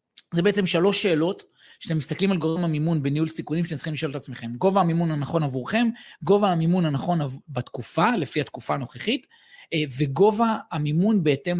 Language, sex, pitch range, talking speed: Hebrew, male, 145-205 Hz, 160 wpm